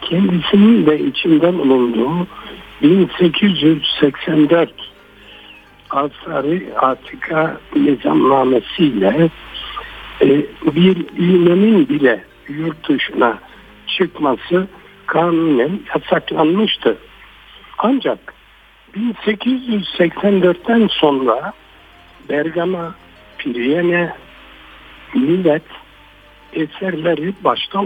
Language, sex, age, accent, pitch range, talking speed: Turkish, male, 60-79, native, 145-195 Hz, 50 wpm